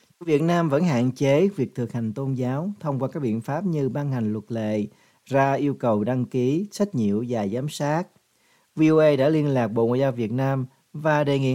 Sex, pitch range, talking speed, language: male, 120-155 Hz, 220 wpm, Vietnamese